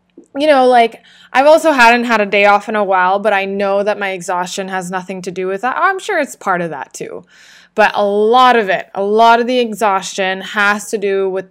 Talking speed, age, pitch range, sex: 240 wpm, 20-39, 195-240 Hz, female